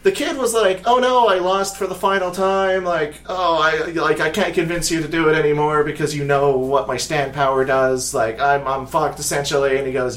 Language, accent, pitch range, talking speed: English, American, 140-185 Hz, 235 wpm